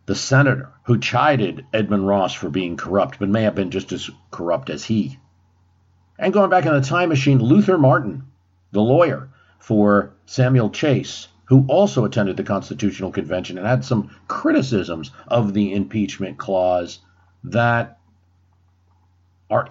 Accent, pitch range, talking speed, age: American, 95-130 Hz, 145 wpm, 50-69